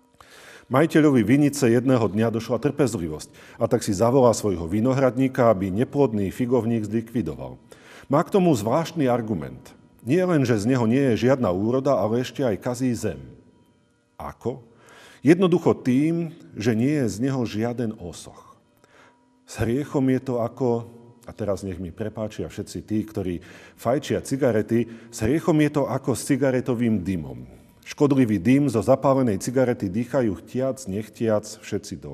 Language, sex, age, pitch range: Slovak, male, 40-59, 105-135 Hz